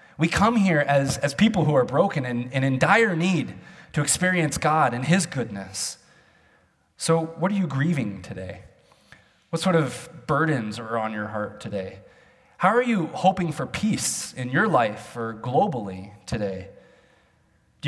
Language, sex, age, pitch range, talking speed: English, male, 20-39, 120-180 Hz, 160 wpm